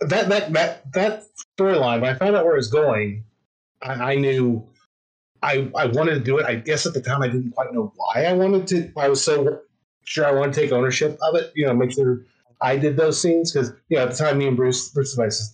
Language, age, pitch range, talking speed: English, 30-49, 120-160 Hz, 260 wpm